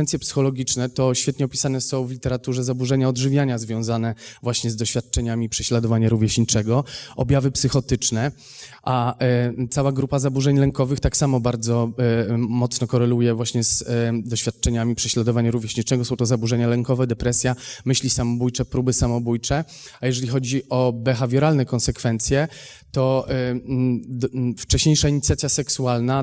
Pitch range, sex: 120-130 Hz, male